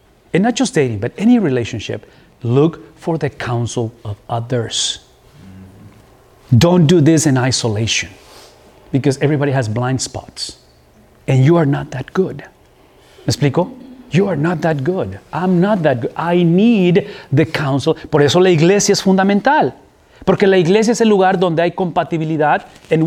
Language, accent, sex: English, Mexican, male